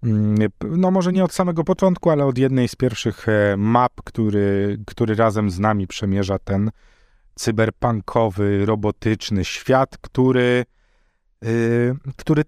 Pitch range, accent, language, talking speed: 110-140 Hz, native, Polish, 120 wpm